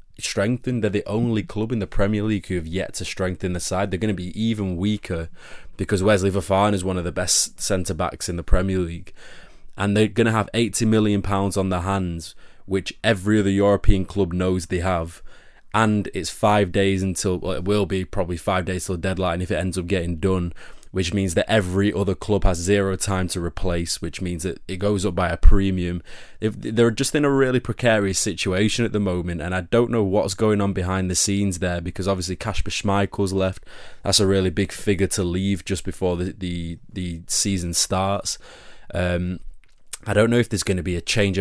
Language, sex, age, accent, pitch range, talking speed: English, male, 20-39, British, 90-105 Hz, 205 wpm